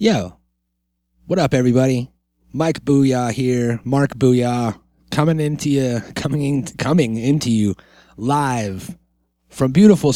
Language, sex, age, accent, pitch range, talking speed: English, male, 30-49, American, 90-140 Hz, 110 wpm